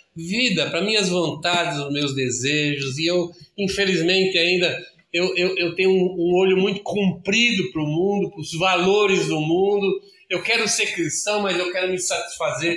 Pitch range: 160-195 Hz